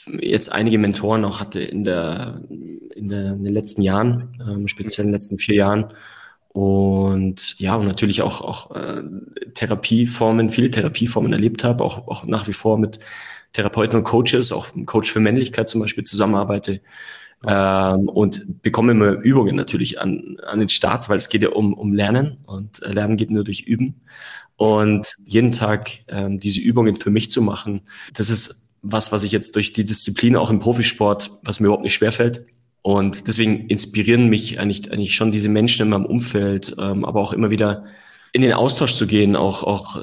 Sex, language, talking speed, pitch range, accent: male, German, 185 wpm, 100-115 Hz, German